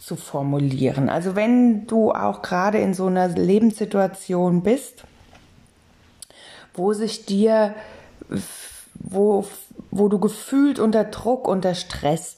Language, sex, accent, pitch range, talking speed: German, female, German, 180-225 Hz, 110 wpm